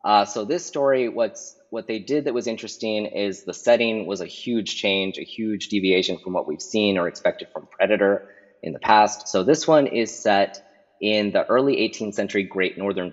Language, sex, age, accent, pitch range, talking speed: English, male, 20-39, American, 90-105 Hz, 200 wpm